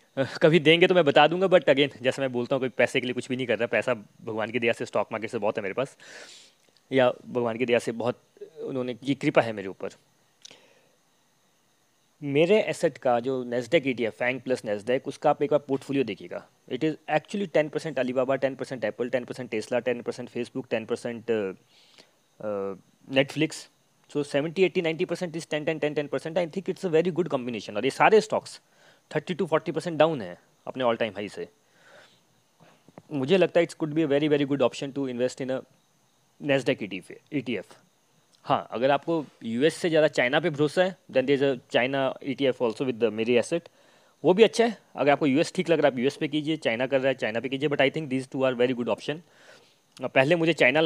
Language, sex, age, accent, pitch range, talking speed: Hindi, male, 20-39, native, 125-160 Hz, 215 wpm